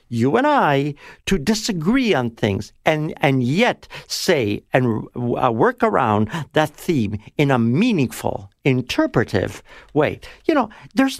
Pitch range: 115-165 Hz